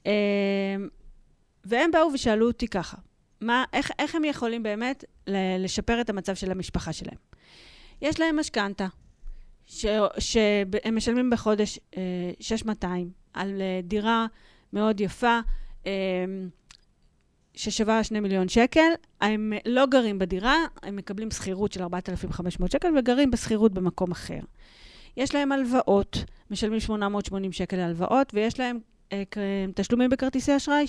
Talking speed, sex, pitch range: 120 wpm, female, 195-260 Hz